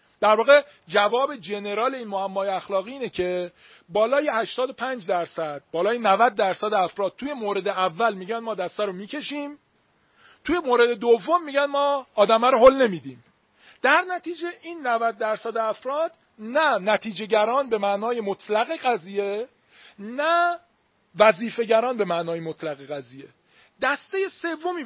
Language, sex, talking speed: Persian, male, 135 wpm